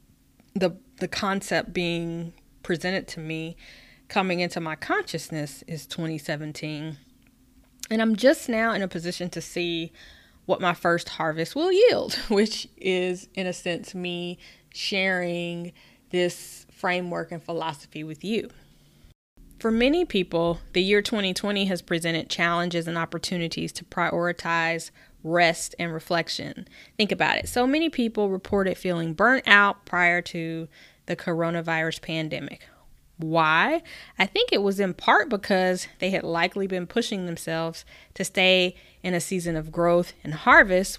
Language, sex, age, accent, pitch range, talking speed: English, female, 20-39, American, 165-200 Hz, 140 wpm